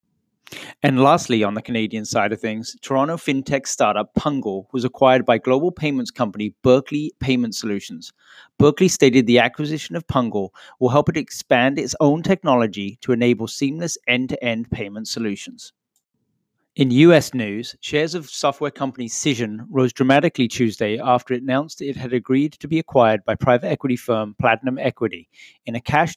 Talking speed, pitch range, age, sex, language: 160 wpm, 115-145 Hz, 40-59, male, English